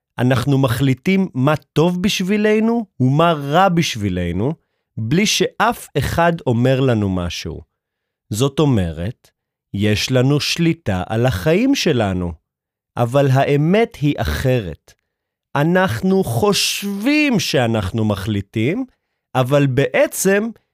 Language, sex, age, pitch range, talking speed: Hebrew, male, 30-49, 115-180 Hz, 95 wpm